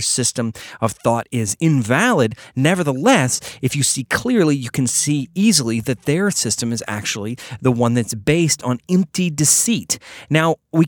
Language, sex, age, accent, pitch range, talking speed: English, male, 30-49, American, 120-155 Hz, 155 wpm